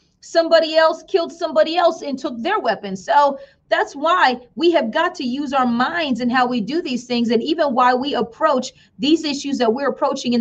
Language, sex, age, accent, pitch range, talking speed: English, female, 30-49, American, 245-325 Hz, 210 wpm